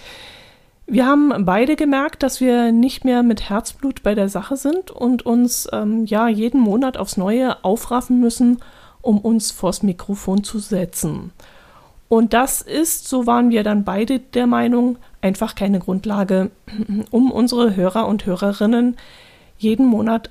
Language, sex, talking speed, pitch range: German, female, 150 wpm, 210-250 Hz